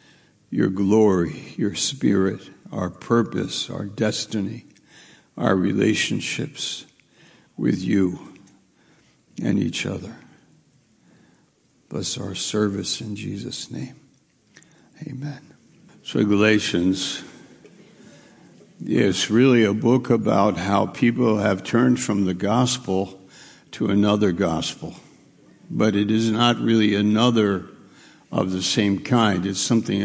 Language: English